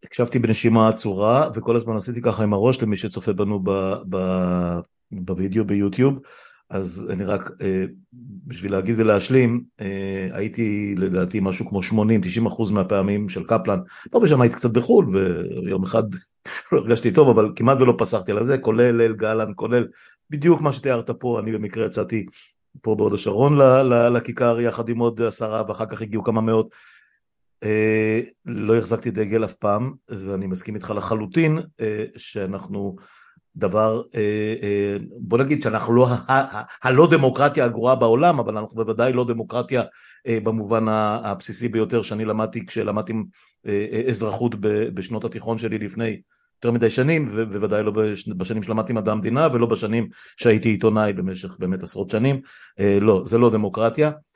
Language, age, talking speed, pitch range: Hebrew, 50-69, 150 wpm, 105-120 Hz